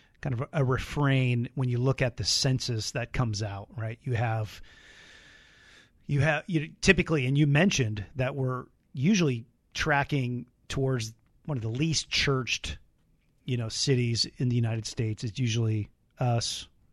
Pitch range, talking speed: 115-145 Hz, 150 wpm